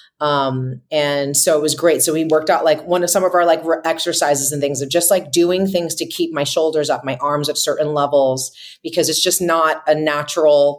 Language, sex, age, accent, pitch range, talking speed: English, female, 30-49, American, 135-160 Hz, 230 wpm